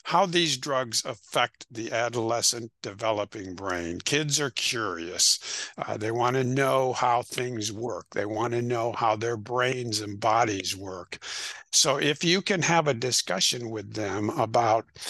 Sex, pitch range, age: male, 115-145 Hz, 60-79